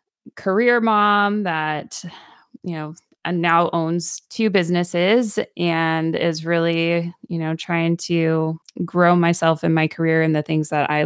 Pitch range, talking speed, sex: 155-185 Hz, 140 wpm, female